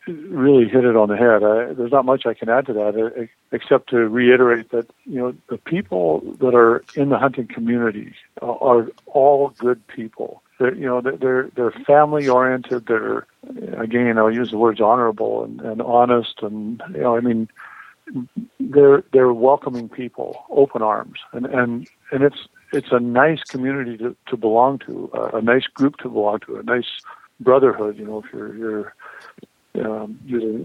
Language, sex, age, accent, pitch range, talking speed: English, male, 50-69, American, 115-130 Hz, 180 wpm